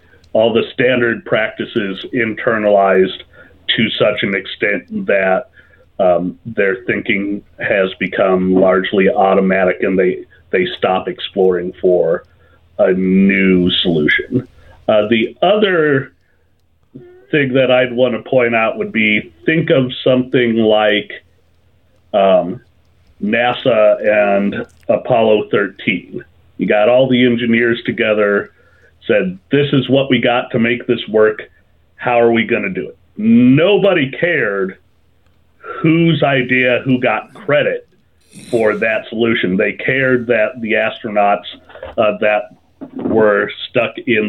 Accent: American